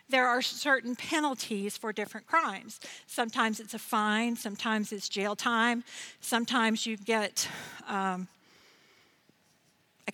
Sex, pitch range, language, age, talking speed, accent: female, 205-250 Hz, English, 50-69, 120 wpm, American